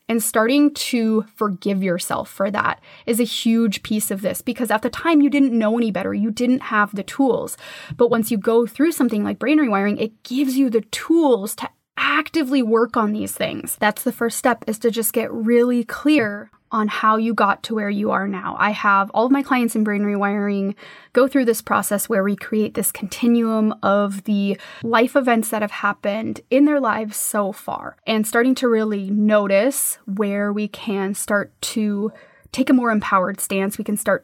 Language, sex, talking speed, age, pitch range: English, female, 200 wpm, 20-39, 205-245 Hz